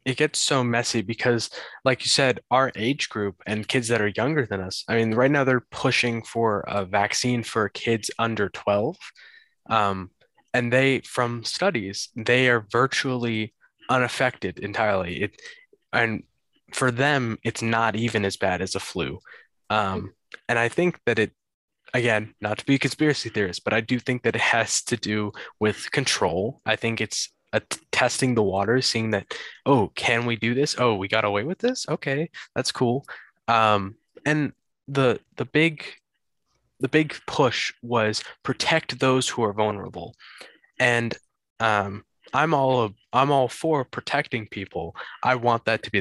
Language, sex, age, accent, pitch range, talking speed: English, male, 20-39, American, 110-135 Hz, 170 wpm